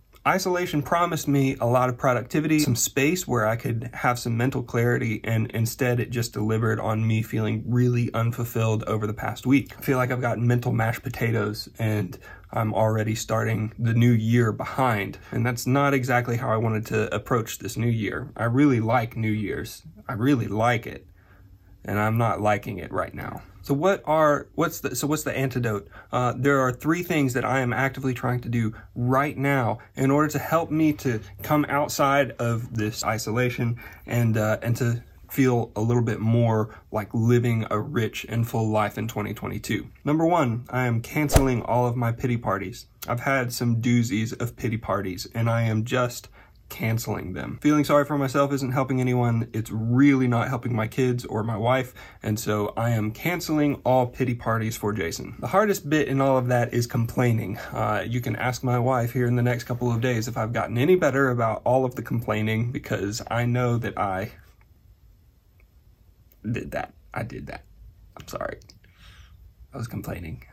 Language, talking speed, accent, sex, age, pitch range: English, 190 wpm, American, male, 30-49, 110-130 Hz